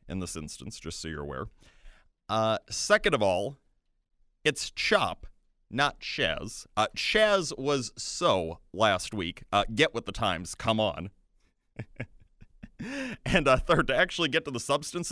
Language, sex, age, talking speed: English, male, 30-49, 145 wpm